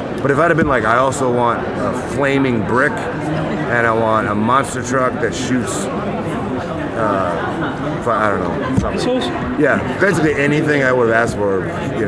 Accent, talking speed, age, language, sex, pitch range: American, 165 wpm, 30-49, English, male, 115-130 Hz